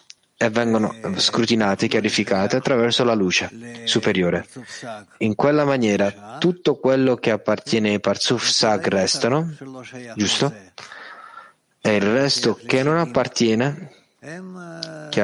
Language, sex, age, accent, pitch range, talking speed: Italian, male, 30-49, native, 105-130 Hz, 105 wpm